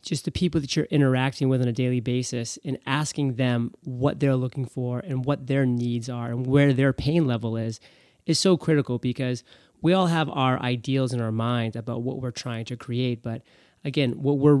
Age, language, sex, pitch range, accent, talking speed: 30-49, English, male, 120-140 Hz, American, 210 wpm